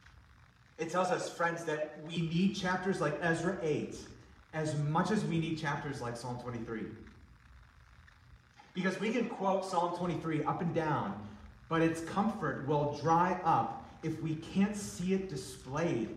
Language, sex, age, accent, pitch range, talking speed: English, male, 30-49, American, 115-165 Hz, 150 wpm